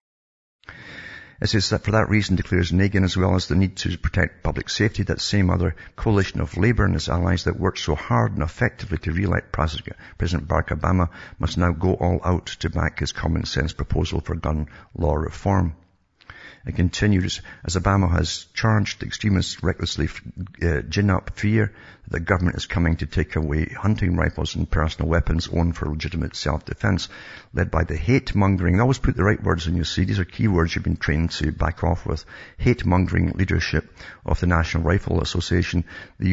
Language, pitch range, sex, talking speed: English, 80-95 Hz, male, 185 wpm